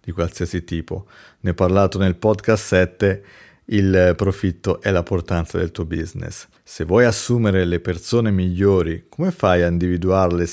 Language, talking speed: Italian, 155 wpm